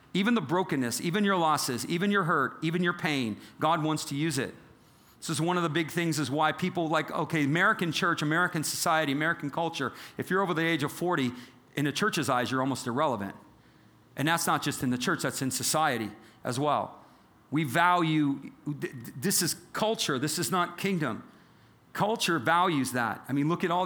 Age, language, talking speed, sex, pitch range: 40-59, English, 195 wpm, male, 130-170 Hz